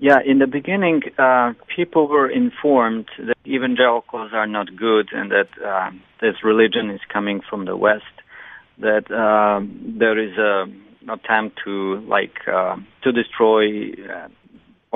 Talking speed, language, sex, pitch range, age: 140 wpm, English, male, 110-135 Hz, 40-59